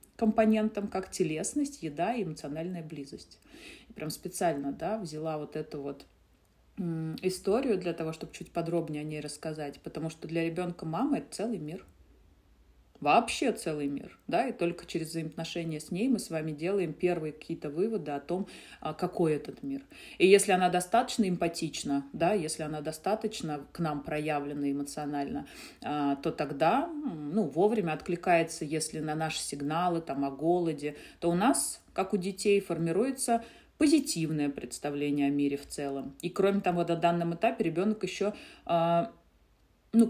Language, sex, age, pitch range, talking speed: Russian, female, 30-49, 155-205 Hz, 150 wpm